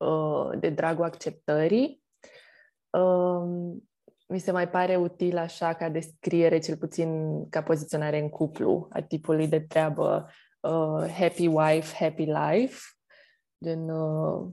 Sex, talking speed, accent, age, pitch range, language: female, 120 wpm, native, 20-39, 165-205 Hz, Romanian